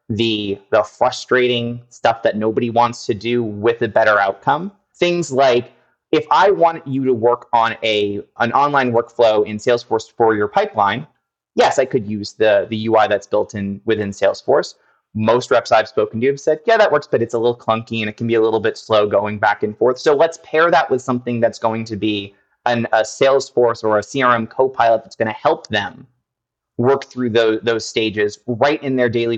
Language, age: English, 30-49